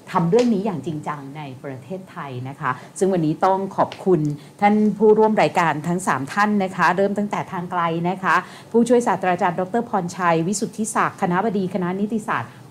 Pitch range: 160-200 Hz